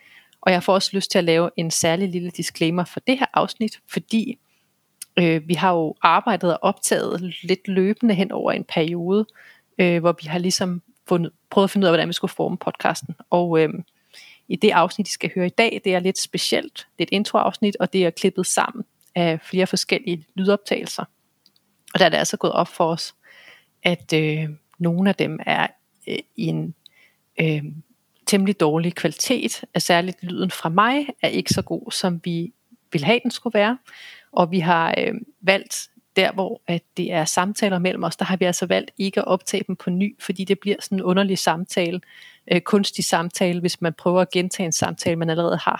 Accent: native